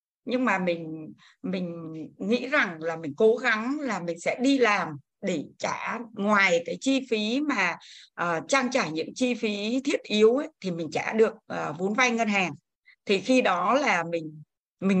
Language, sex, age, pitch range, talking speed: Vietnamese, female, 60-79, 185-250 Hz, 185 wpm